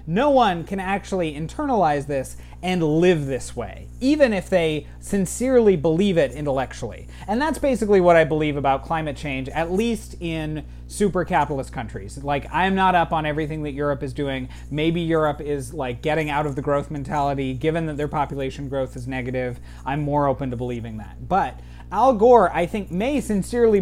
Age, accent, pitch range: 30-49, American, 140-195 Hz